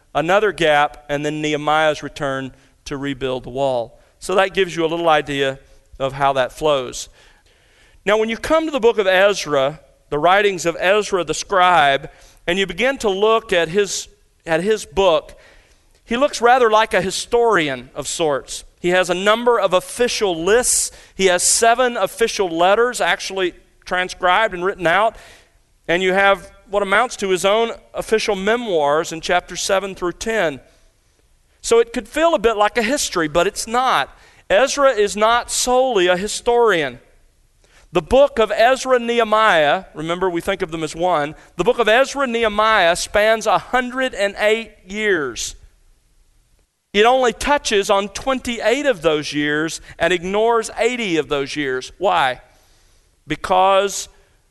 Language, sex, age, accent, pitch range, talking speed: English, male, 40-59, American, 160-225 Hz, 155 wpm